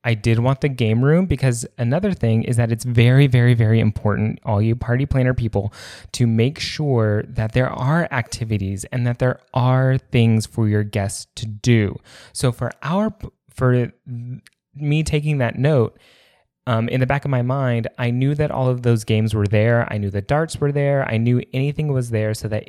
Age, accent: 20-39, American